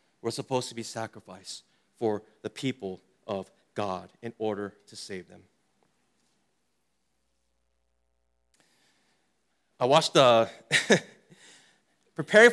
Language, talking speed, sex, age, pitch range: English, 95 wpm, male, 30-49, 115-180 Hz